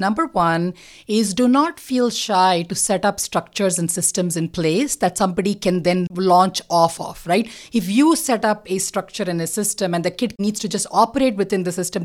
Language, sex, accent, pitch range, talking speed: English, female, Indian, 180-235 Hz, 210 wpm